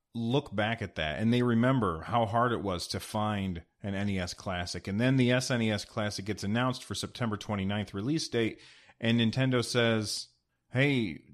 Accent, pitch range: American, 105-130 Hz